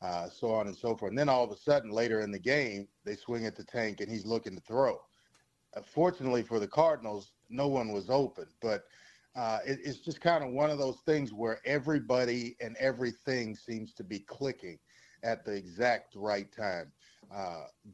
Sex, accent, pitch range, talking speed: male, American, 110-130 Hz, 200 wpm